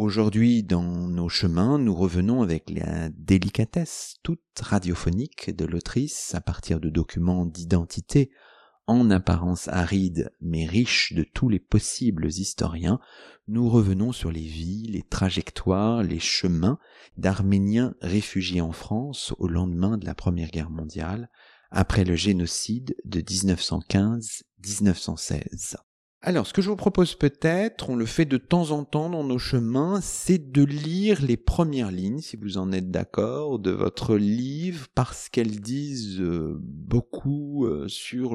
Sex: male